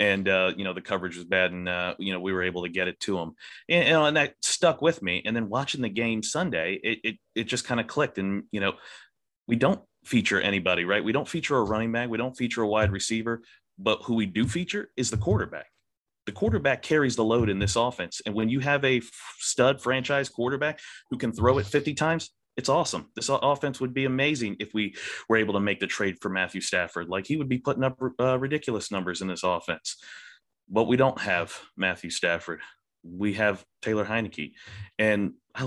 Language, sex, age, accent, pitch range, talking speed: English, male, 30-49, American, 100-130 Hz, 220 wpm